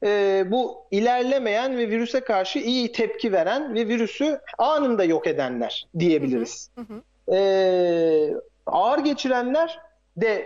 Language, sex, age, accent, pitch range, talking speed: Turkish, male, 40-59, native, 170-245 Hz, 110 wpm